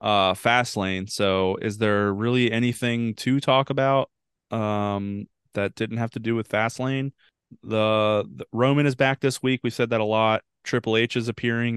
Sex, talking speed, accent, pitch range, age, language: male, 185 wpm, American, 105-125 Hz, 20-39, English